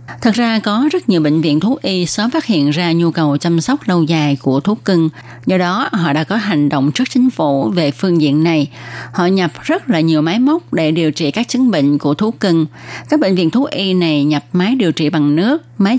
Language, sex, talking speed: Vietnamese, female, 245 wpm